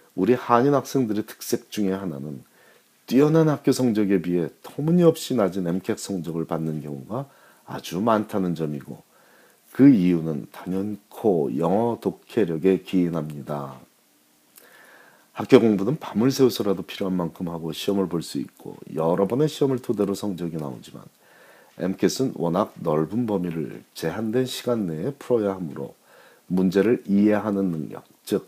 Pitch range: 85-125 Hz